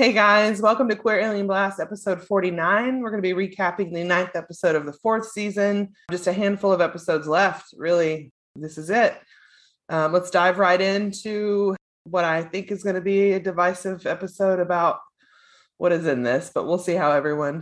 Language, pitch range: English, 170-205 Hz